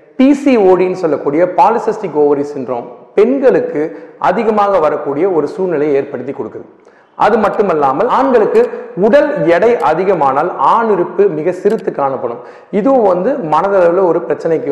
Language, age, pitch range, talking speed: Tamil, 40-59, 155-210 Hz, 110 wpm